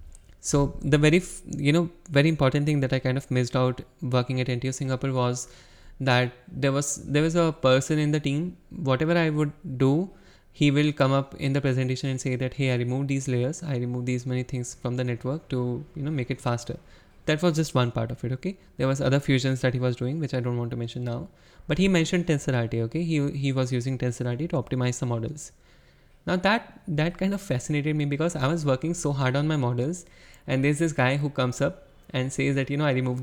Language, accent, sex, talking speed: English, Indian, male, 235 wpm